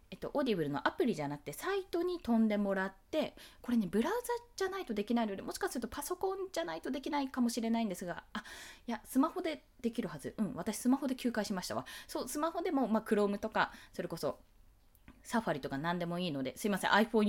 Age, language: 20-39, Japanese